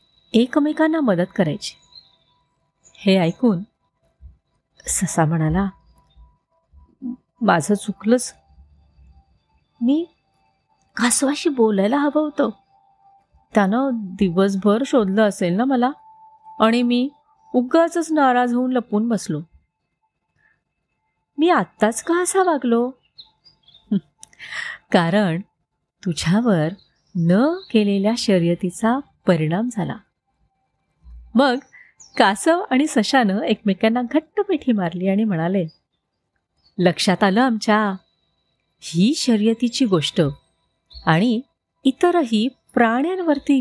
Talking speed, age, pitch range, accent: 80 wpm, 30-49, 175-265 Hz, native